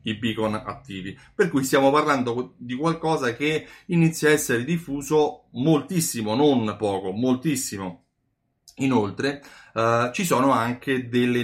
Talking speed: 125 wpm